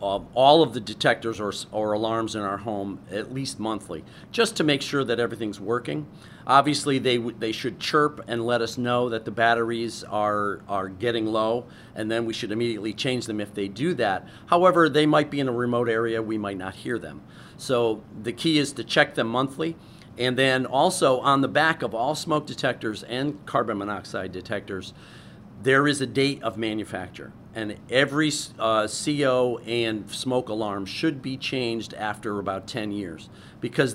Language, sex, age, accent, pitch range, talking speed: English, male, 50-69, American, 110-135 Hz, 180 wpm